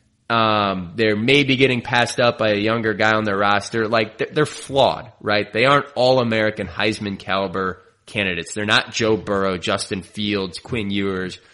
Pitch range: 100-120 Hz